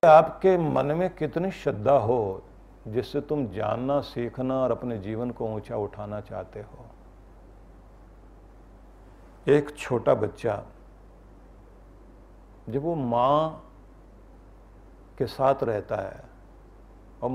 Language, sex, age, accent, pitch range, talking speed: Hindi, male, 50-69, native, 95-140 Hz, 100 wpm